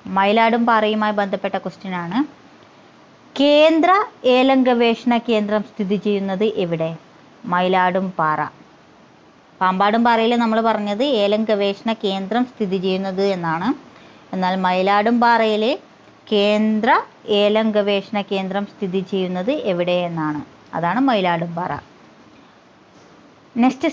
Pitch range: 195-255 Hz